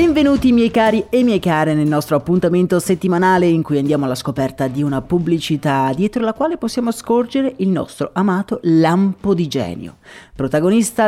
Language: Italian